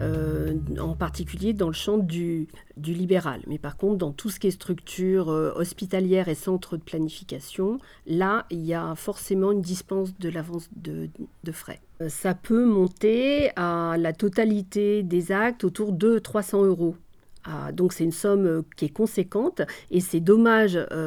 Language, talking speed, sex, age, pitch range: French, 170 wpm, female, 50-69, 165-200 Hz